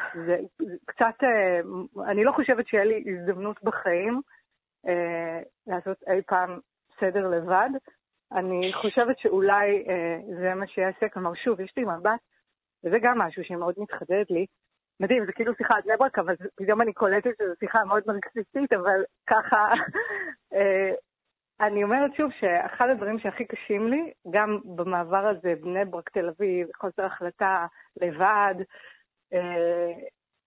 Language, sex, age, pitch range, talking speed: Hebrew, female, 30-49, 185-240 Hz, 140 wpm